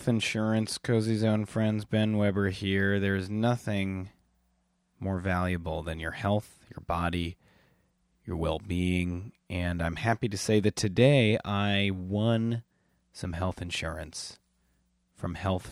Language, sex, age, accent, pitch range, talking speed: English, male, 30-49, American, 85-105 Hz, 125 wpm